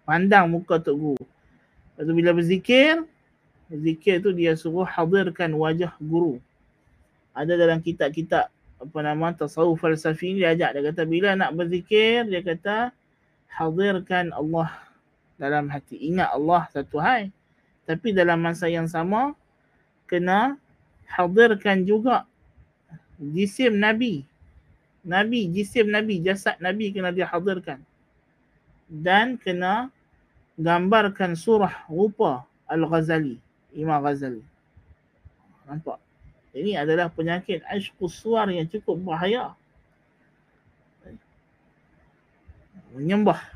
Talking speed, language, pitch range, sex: 100 wpm, Malay, 155-195 Hz, male